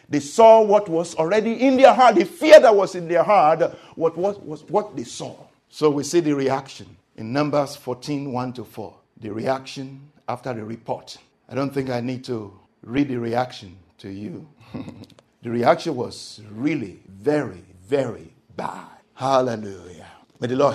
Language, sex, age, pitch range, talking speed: English, male, 60-79, 105-145 Hz, 170 wpm